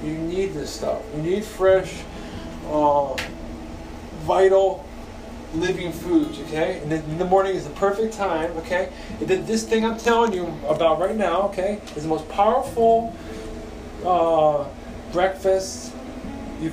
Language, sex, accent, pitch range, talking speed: English, male, American, 155-195 Hz, 145 wpm